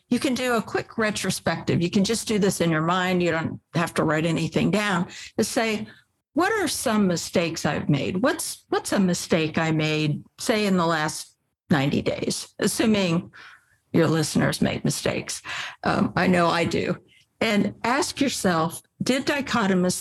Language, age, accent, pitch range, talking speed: English, 60-79, American, 170-215 Hz, 170 wpm